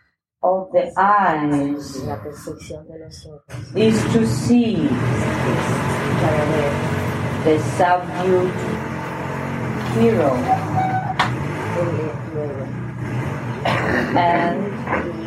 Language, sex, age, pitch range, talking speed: English, female, 30-49, 125-180 Hz, 40 wpm